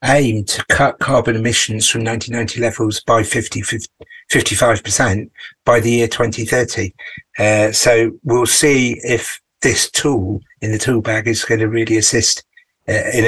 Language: English